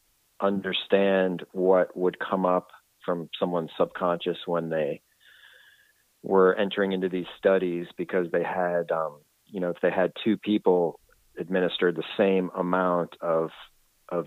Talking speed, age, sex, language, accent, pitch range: 135 wpm, 30-49, male, English, American, 85-95 Hz